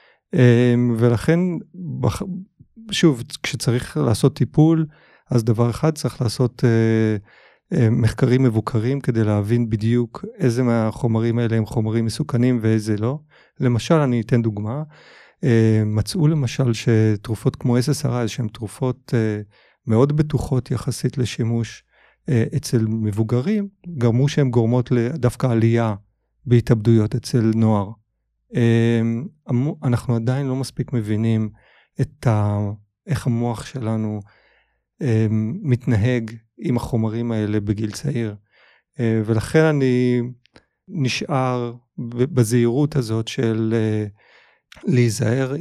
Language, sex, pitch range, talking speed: Hebrew, male, 115-135 Hz, 90 wpm